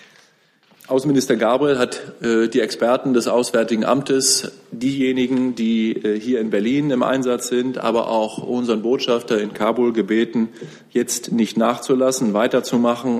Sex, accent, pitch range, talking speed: male, German, 110-130 Hz, 130 wpm